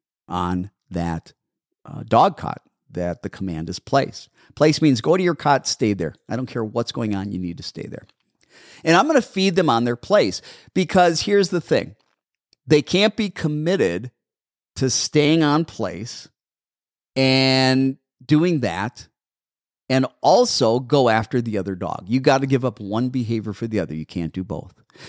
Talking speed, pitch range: 175 wpm, 100-145 Hz